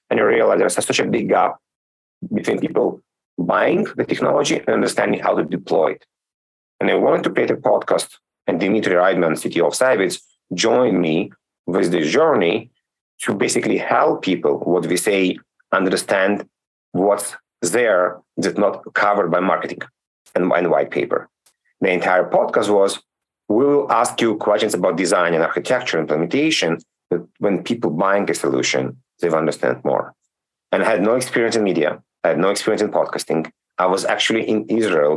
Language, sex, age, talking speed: English, male, 40-59, 160 wpm